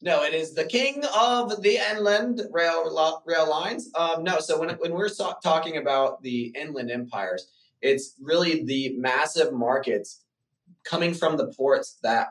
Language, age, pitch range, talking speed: English, 20-39, 110-160 Hz, 155 wpm